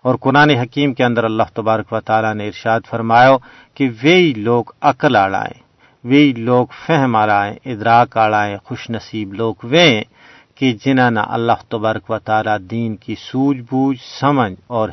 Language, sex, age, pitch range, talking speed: Urdu, male, 50-69, 105-125 Hz, 155 wpm